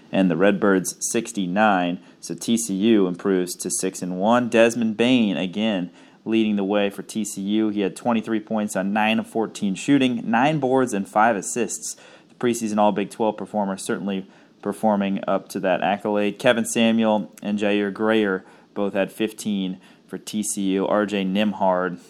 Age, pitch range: 30-49, 100-120 Hz